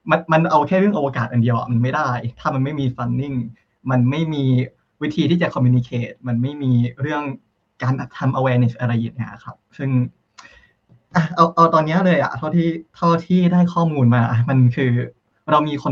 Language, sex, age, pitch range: Thai, male, 20-39, 120-155 Hz